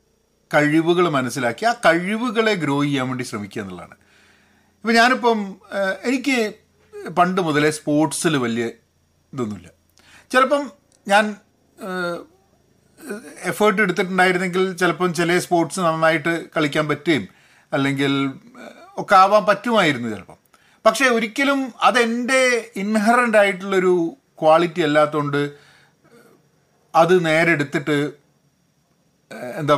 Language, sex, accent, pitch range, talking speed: Malayalam, male, native, 145-210 Hz, 85 wpm